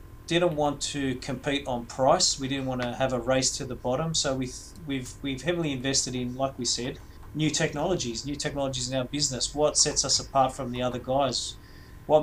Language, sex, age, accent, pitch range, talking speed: English, male, 30-49, Australian, 125-145 Hz, 210 wpm